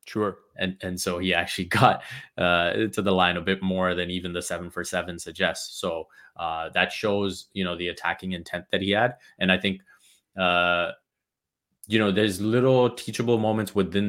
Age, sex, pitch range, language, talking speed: 20-39, male, 90-100 Hz, English, 185 wpm